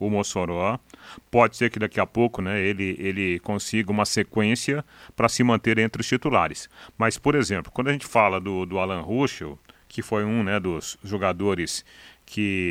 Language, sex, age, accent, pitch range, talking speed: Portuguese, male, 40-59, Brazilian, 95-120 Hz, 180 wpm